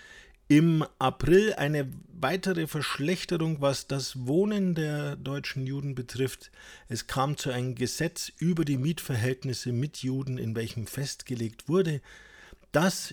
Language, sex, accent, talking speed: German, male, German, 125 wpm